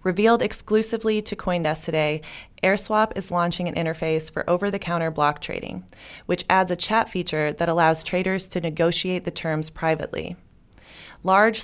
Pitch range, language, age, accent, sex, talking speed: 160-195 Hz, English, 20-39, American, female, 145 wpm